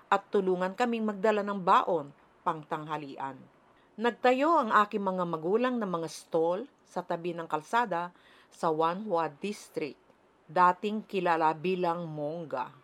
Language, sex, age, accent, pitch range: Chinese, female, 50-69, Filipino, 170-205 Hz